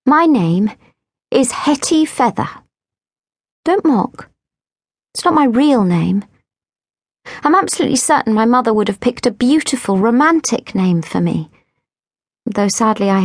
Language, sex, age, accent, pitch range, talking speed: English, female, 40-59, British, 195-255 Hz, 130 wpm